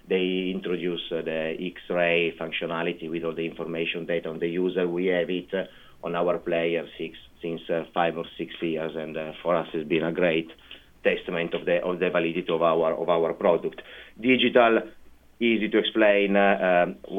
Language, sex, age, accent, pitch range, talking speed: English, male, 30-49, Italian, 85-100 Hz, 185 wpm